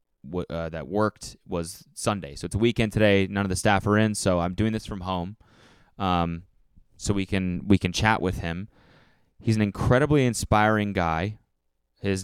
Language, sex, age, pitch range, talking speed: English, male, 20-39, 85-110 Hz, 180 wpm